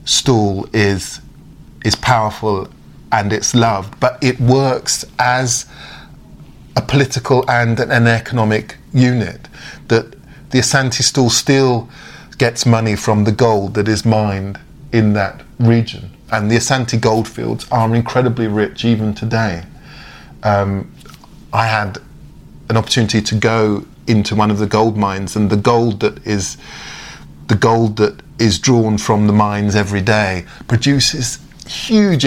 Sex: male